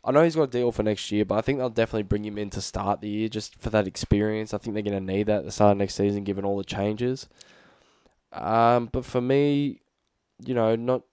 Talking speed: 260 wpm